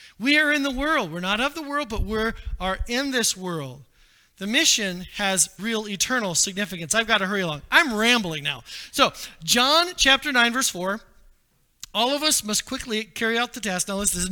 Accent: American